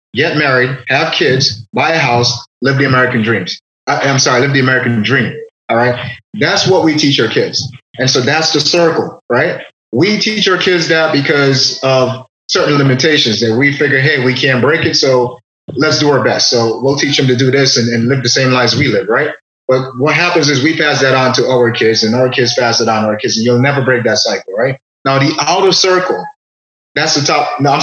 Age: 30-49